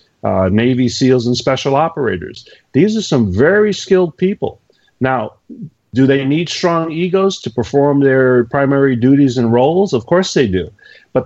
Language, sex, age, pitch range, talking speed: English, male, 40-59, 120-155 Hz, 160 wpm